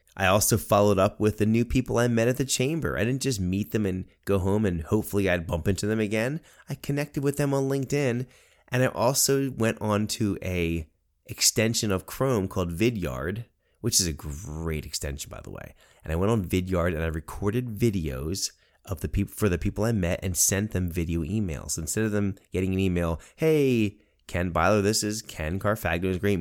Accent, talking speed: American, 210 wpm